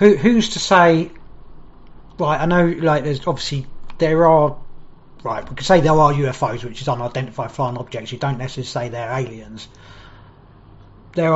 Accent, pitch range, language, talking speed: British, 120-160 Hz, English, 160 wpm